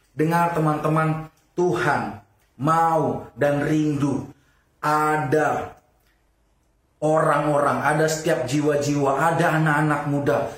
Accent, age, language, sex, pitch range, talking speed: Indonesian, 30-49, English, male, 135-155 Hz, 80 wpm